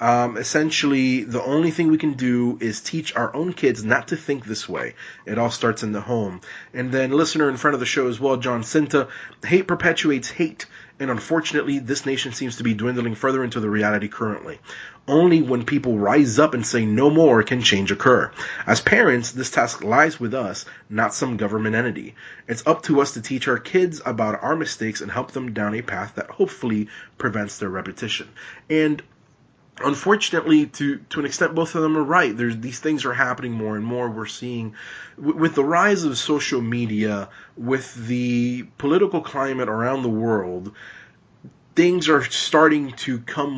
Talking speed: 185 wpm